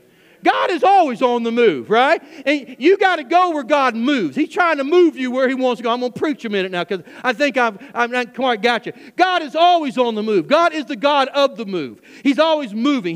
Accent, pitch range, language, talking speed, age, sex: American, 265-345 Hz, English, 245 wpm, 40-59, male